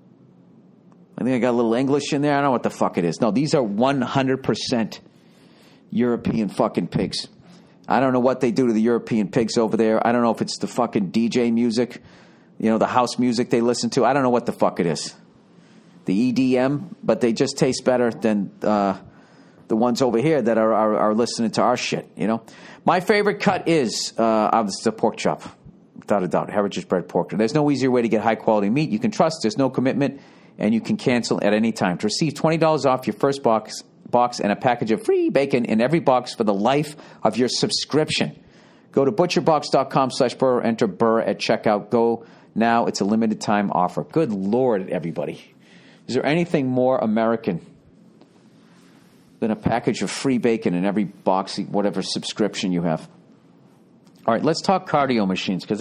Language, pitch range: English, 110-140 Hz